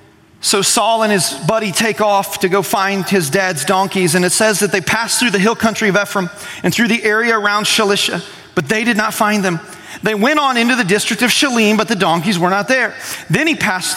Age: 30-49